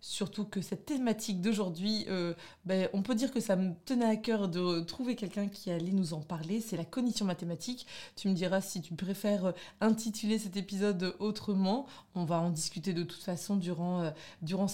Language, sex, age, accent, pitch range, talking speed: French, female, 20-39, French, 175-210 Hz, 195 wpm